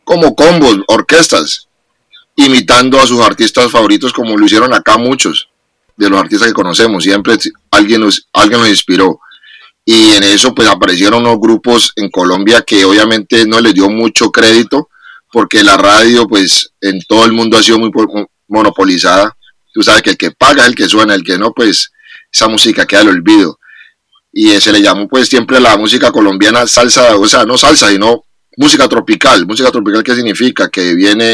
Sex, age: male, 30-49